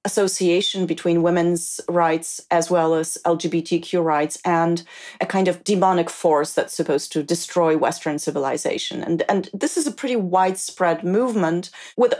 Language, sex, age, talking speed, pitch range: English, female, 30-49, 150 wpm, 170-195 Hz